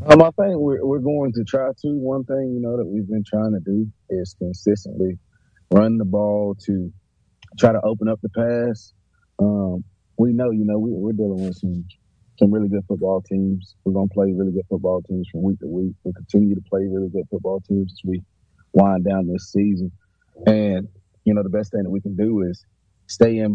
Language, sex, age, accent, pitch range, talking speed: English, male, 30-49, American, 95-105 Hz, 215 wpm